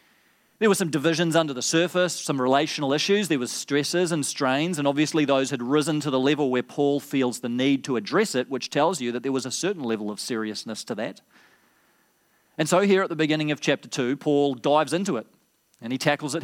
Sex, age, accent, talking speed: male, 40-59, Australian, 225 wpm